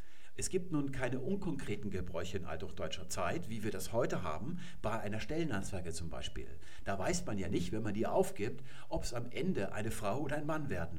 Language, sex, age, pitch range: German, male, 50-69, 95-135 Hz